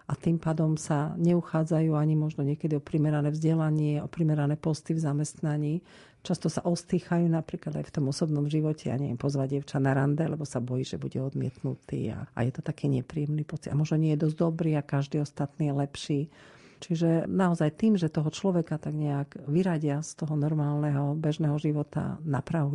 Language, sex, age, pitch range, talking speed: Slovak, female, 50-69, 140-165 Hz, 185 wpm